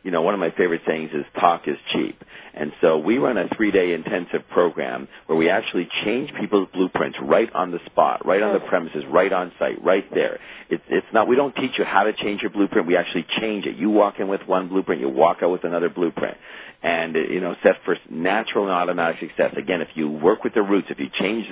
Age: 50-69